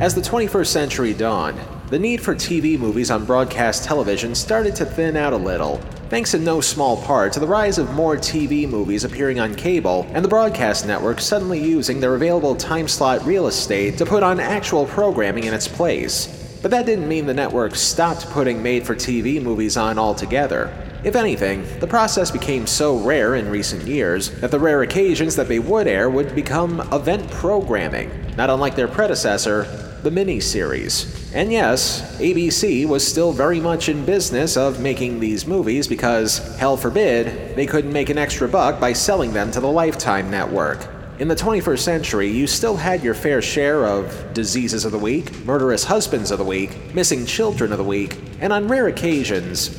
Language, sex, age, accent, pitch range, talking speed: English, male, 30-49, American, 115-170 Hz, 185 wpm